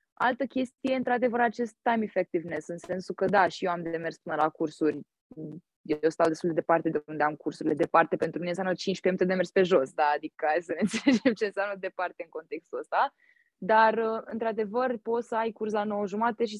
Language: Romanian